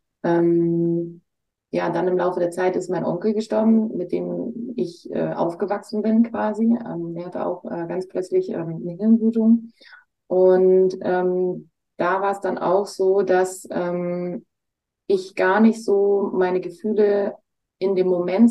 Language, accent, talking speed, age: German, German, 150 wpm, 20-39